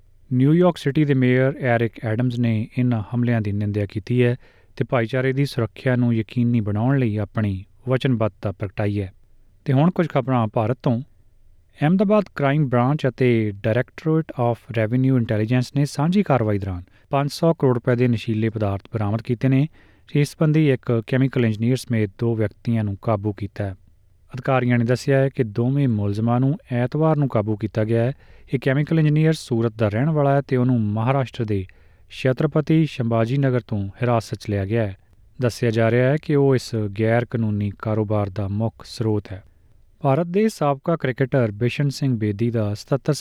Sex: male